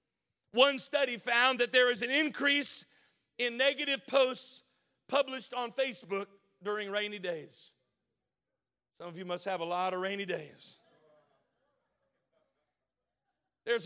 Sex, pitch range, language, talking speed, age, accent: male, 230-275 Hz, English, 120 wpm, 50-69, American